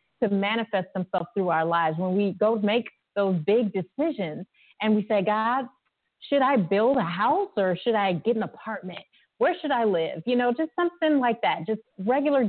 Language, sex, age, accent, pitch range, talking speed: English, female, 30-49, American, 195-260 Hz, 190 wpm